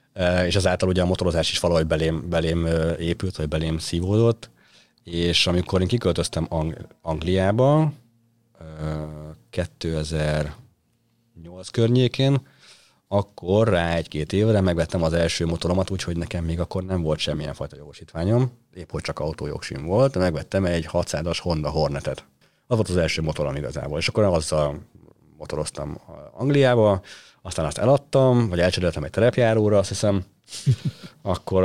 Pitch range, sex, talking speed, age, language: 80-105 Hz, male, 135 wpm, 30-49, Hungarian